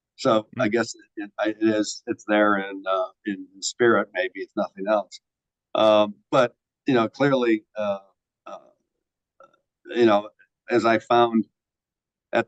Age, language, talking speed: 50-69, English, 145 wpm